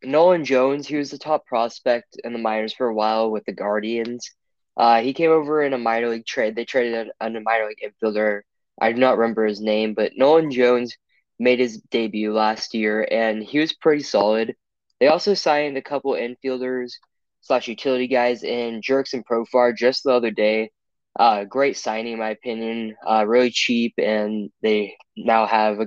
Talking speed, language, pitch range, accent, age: 190 wpm, English, 110-130 Hz, American, 10-29